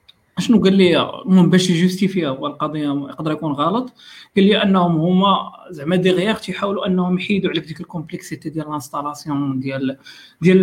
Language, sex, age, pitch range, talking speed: Arabic, male, 40-59, 165-190 Hz, 145 wpm